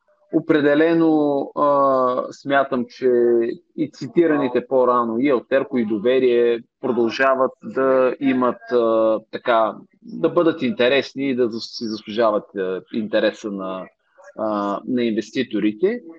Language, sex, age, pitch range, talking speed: Bulgarian, male, 30-49, 110-155 Hz, 95 wpm